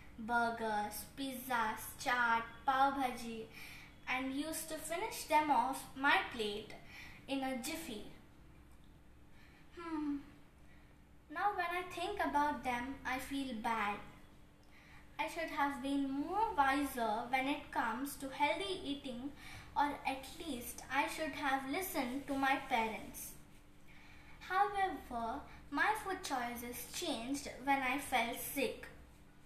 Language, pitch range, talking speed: English, 255-320 Hz, 115 wpm